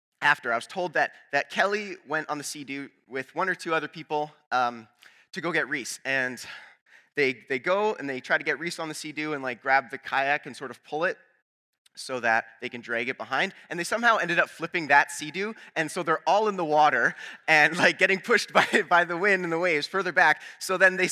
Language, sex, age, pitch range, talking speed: English, male, 20-39, 130-170 Hz, 235 wpm